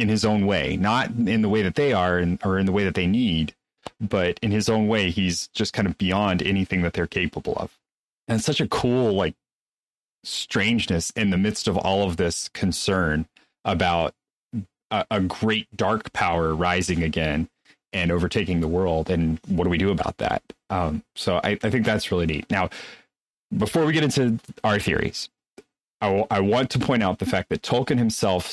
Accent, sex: American, male